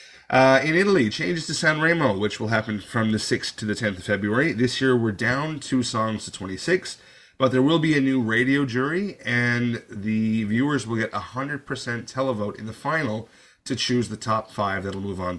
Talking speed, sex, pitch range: 205 wpm, male, 100-130 Hz